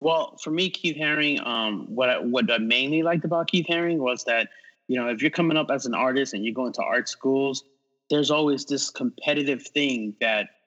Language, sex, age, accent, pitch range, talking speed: English, male, 30-49, American, 120-145 Hz, 215 wpm